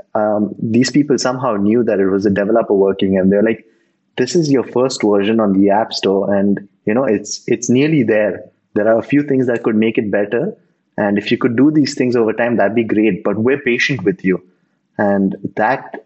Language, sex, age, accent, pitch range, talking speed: English, male, 20-39, Indian, 105-125 Hz, 220 wpm